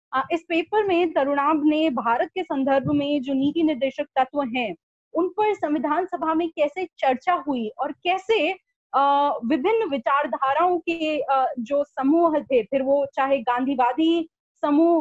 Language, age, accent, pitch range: Hindi, 20-39, native, 275-330 Hz